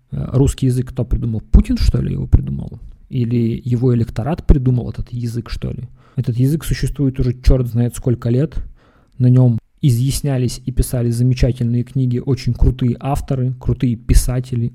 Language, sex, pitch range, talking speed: Russian, male, 115-130 Hz, 150 wpm